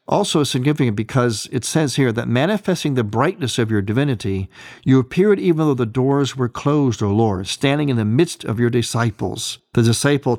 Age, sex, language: 50-69, male, English